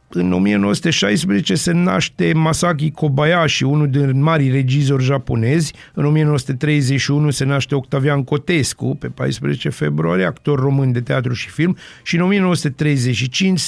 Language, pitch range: Romanian, 135-155 Hz